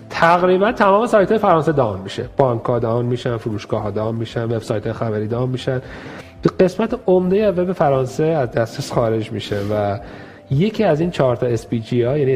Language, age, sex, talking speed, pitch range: Persian, 40-59, male, 190 wpm, 110-155 Hz